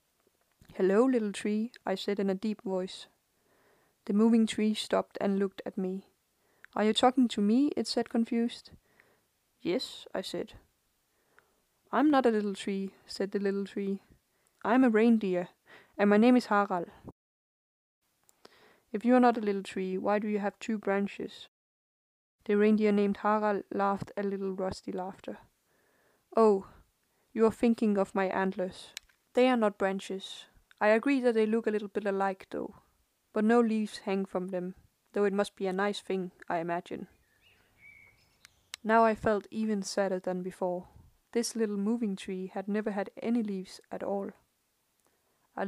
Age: 20-39